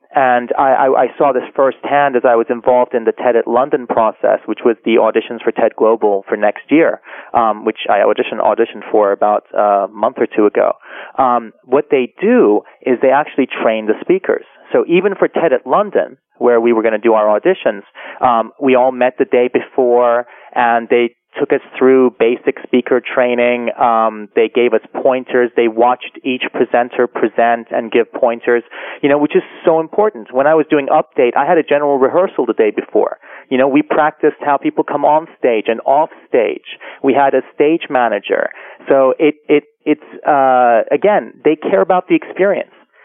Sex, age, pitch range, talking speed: male, 30-49, 120-155 Hz, 190 wpm